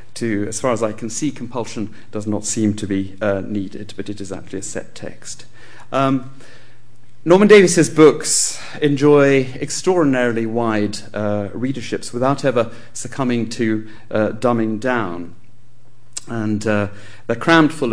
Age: 40-59